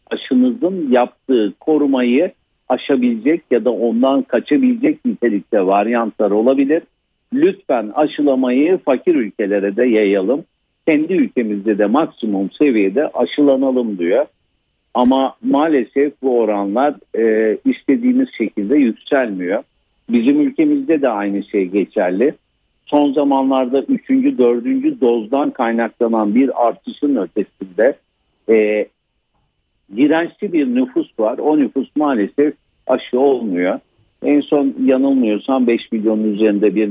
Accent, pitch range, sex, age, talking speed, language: native, 115-150 Hz, male, 60-79, 105 wpm, Turkish